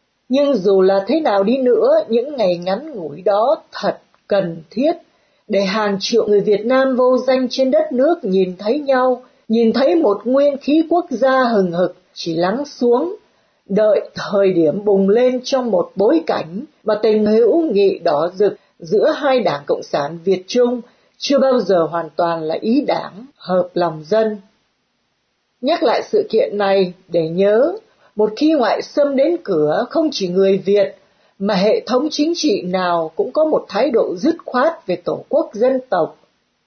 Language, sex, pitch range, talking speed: Vietnamese, female, 195-275 Hz, 180 wpm